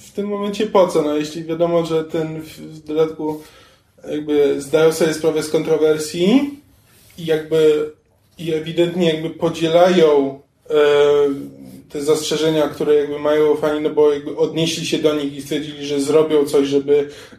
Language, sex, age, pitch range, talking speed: Polish, male, 20-39, 150-165 Hz, 145 wpm